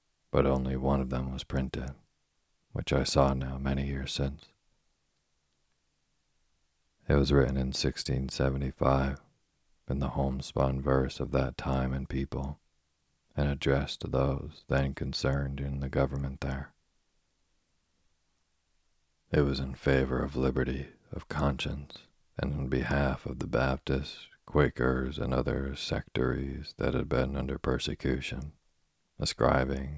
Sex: male